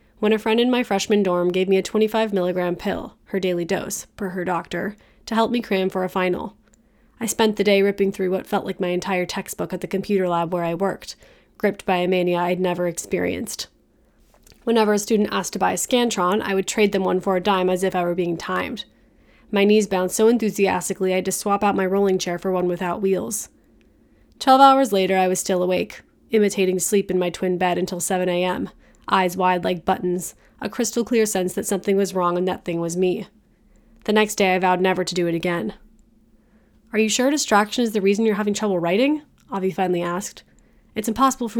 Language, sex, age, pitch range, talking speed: English, female, 20-39, 185-215 Hz, 215 wpm